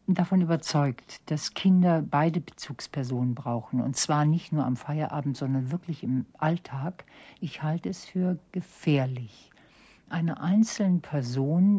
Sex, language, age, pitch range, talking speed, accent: female, German, 60-79, 140-185 Hz, 125 wpm, German